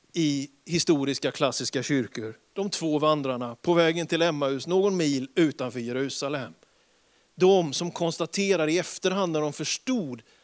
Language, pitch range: Swedish, 145-175 Hz